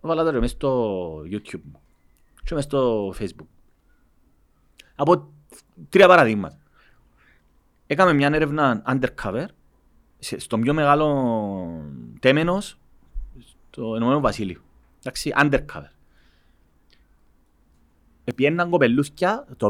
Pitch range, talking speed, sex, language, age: 100-155 Hz, 75 wpm, male, Greek, 30-49